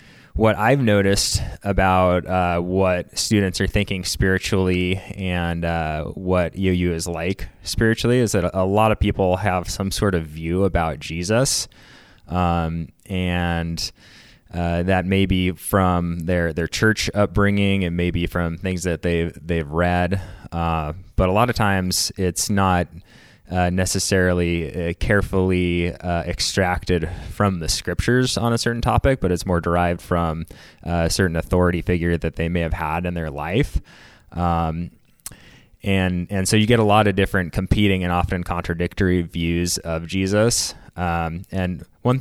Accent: American